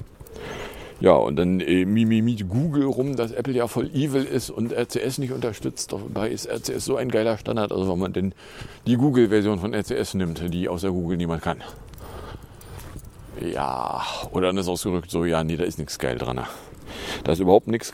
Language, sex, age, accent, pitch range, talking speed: German, male, 50-69, German, 90-115 Hz, 185 wpm